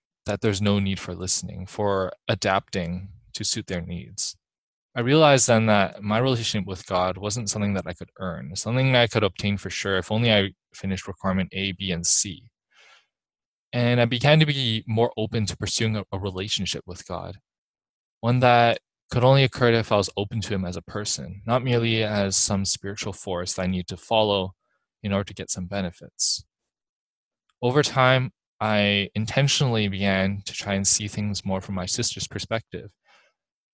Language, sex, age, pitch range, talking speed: English, male, 20-39, 95-115 Hz, 180 wpm